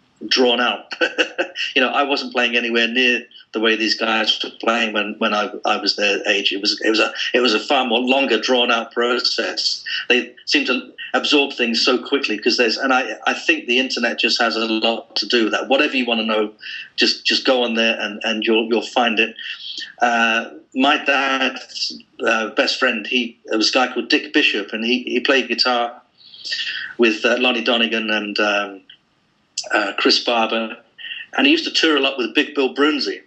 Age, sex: 40-59, male